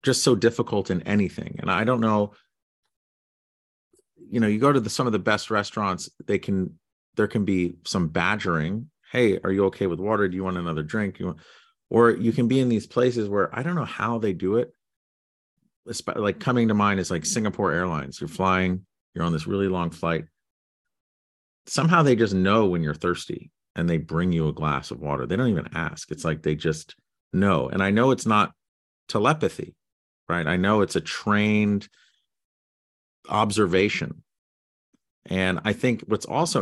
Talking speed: 185 wpm